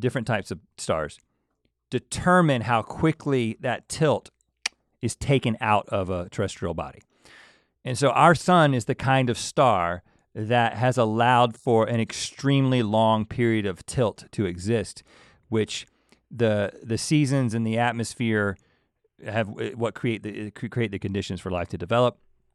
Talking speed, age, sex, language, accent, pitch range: 145 wpm, 40-59, male, English, American, 100-125 Hz